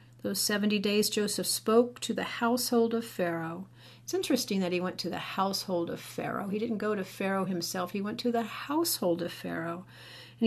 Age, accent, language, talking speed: 50-69, American, English, 195 wpm